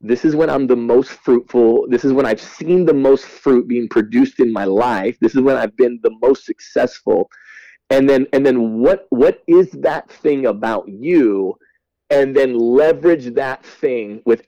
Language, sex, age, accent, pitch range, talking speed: English, male, 30-49, American, 120-165 Hz, 185 wpm